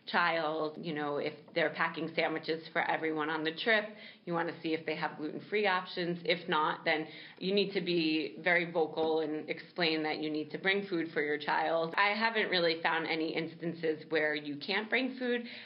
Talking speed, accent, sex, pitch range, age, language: 200 wpm, American, female, 155-185 Hz, 30-49, English